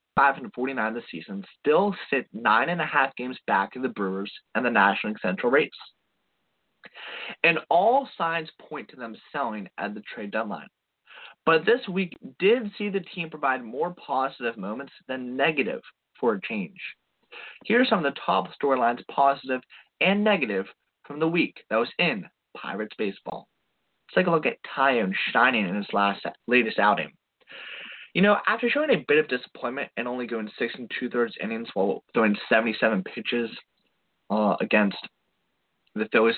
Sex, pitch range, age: male, 110-165 Hz, 20-39